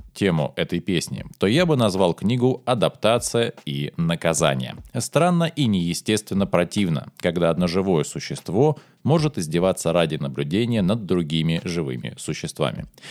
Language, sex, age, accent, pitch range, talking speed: Russian, male, 20-39, native, 85-130 Hz, 125 wpm